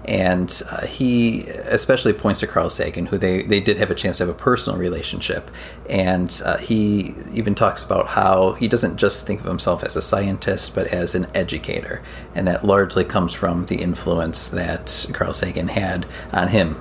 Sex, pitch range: male, 90-105 Hz